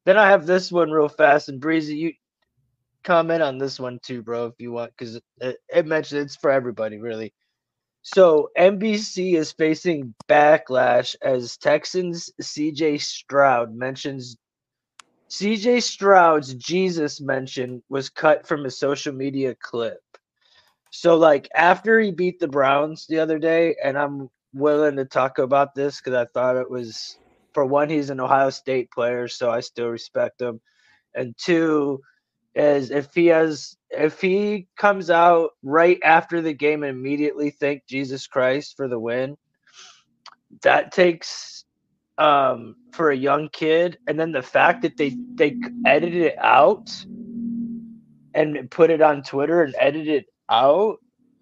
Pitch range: 135-170 Hz